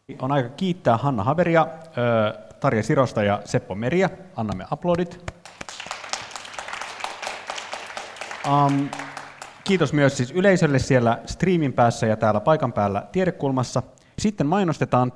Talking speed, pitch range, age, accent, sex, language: 100 wpm, 95-135 Hz, 30-49, native, male, Finnish